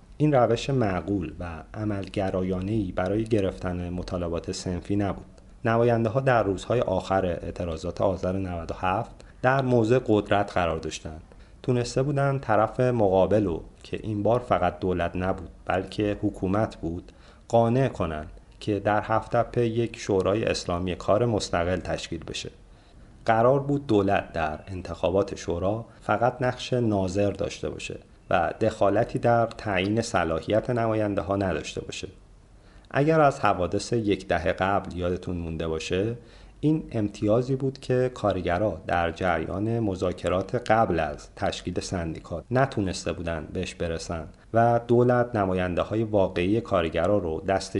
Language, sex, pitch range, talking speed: Persian, male, 90-115 Hz, 130 wpm